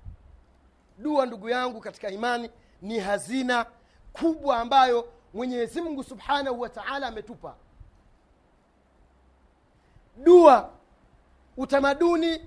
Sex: male